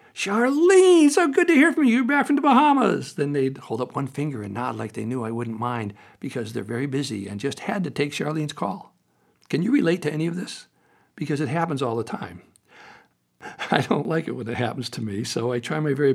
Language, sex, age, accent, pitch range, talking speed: English, male, 60-79, American, 115-160 Hz, 240 wpm